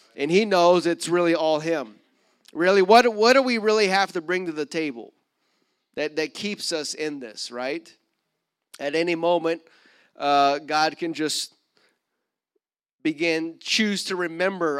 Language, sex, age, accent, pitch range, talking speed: English, male, 30-49, American, 155-180 Hz, 150 wpm